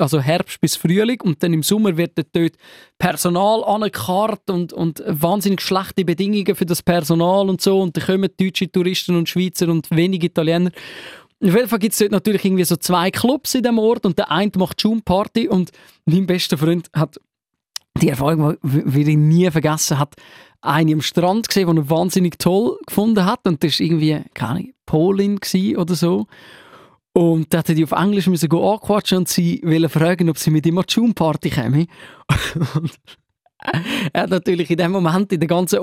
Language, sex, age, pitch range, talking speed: German, male, 20-39, 165-200 Hz, 185 wpm